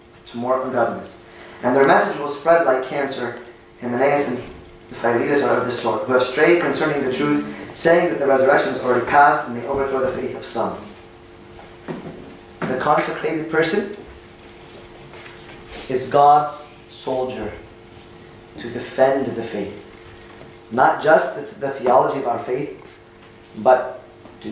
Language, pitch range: English, 120-170 Hz